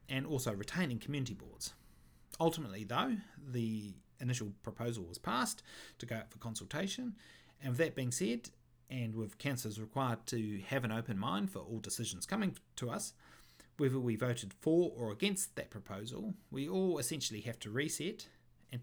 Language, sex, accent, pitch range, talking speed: English, male, Australian, 105-135 Hz, 165 wpm